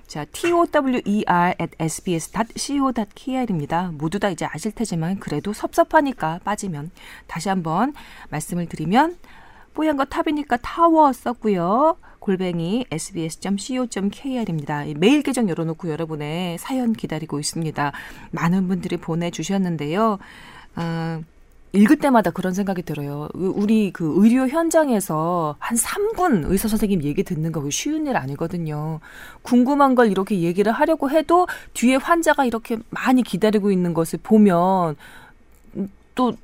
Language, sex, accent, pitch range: Korean, female, native, 165-250 Hz